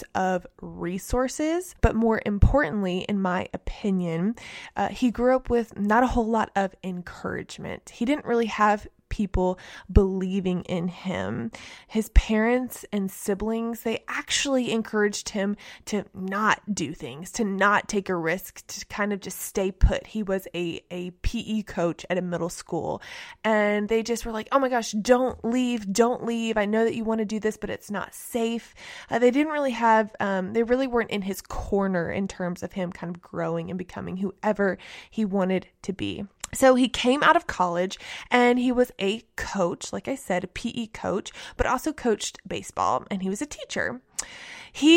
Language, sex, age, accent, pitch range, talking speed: English, female, 20-39, American, 190-235 Hz, 185 wpm